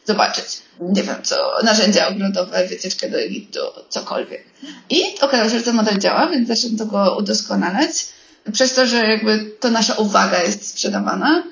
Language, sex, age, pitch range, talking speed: Polish, female, 20-39, 210-270 Hz, 150 wpm